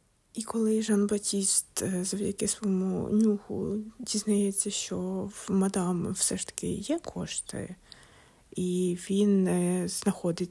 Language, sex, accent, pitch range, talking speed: Ukrainian, female, native, 180-210 Hz, 105 wpm